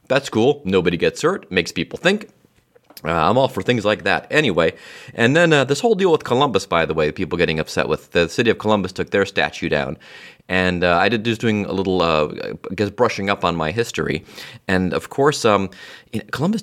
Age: 30-49